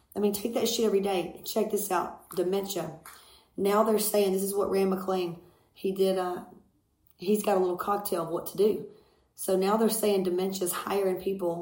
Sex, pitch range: female, 175-205 Hz